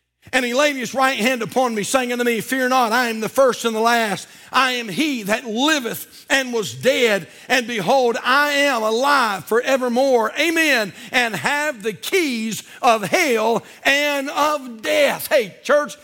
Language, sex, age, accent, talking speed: English, male, 50-69, American, 170 wpm